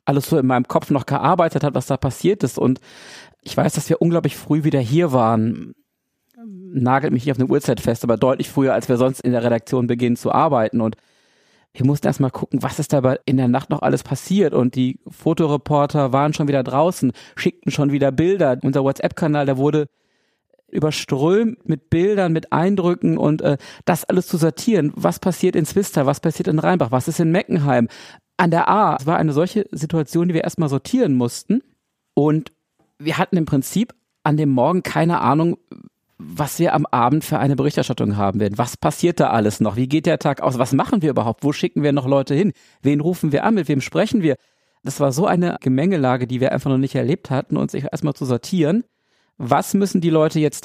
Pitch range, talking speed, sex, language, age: 135-170 Hz, 205 wpm, male, German, 40-59